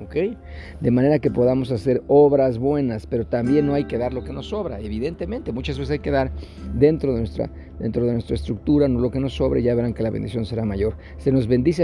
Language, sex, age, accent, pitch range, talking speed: Spanish, male, 50-69, Mexican, 110-130 Hz, 240 wpm